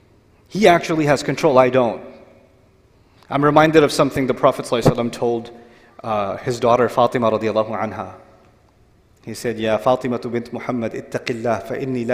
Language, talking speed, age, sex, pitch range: English, 150 wpm, 30-49, male, 120-175 Hz